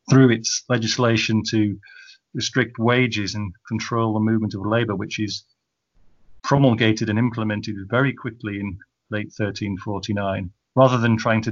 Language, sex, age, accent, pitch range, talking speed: English, male, 30-49, British, 105-125 Hz, 135 wpm